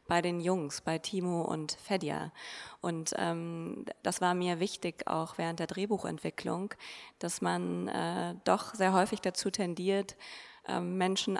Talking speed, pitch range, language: 140 wpm, 165-195 Hz, German